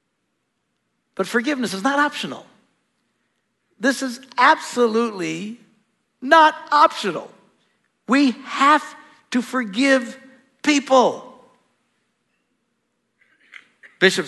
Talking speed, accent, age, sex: 65 wpm, American, 60-79, male